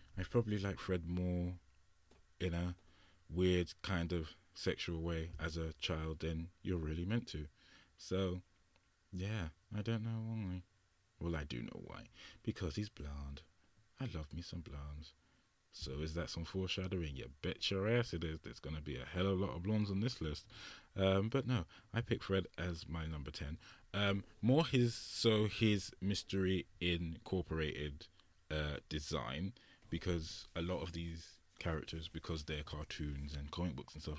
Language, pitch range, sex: English, 80-100 Hz, male